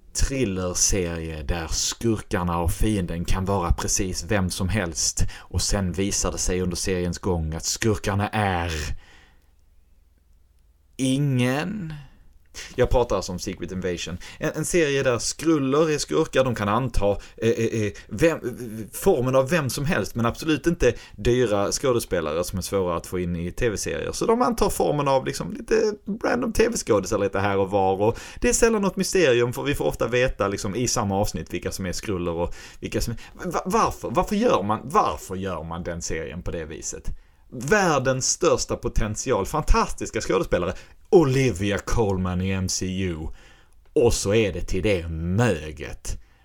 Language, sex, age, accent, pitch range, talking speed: Swedish, male, 30-49, native, 85-125 Hz, 165 wpm